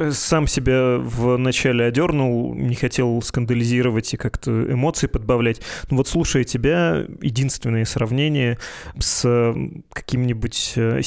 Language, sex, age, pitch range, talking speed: Russian, male, 20-39, 120-135 Hz, 100 wpm